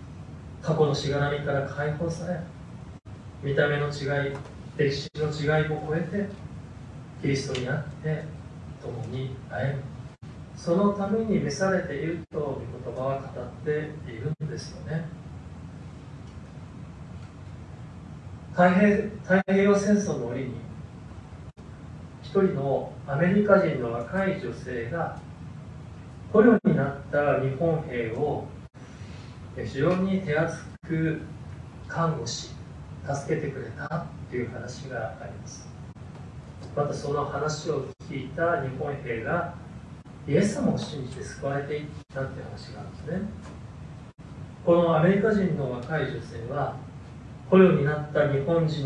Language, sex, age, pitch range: Japanese, male, 30-49, 135-165 Hz